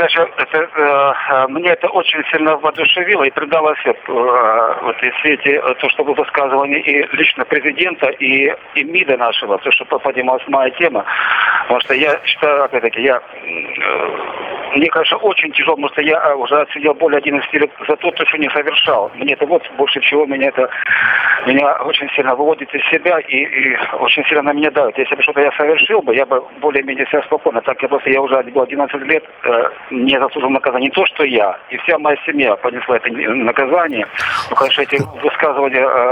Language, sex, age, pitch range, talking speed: Russian, male, 50-69, 130-155 Hz, 185 wpm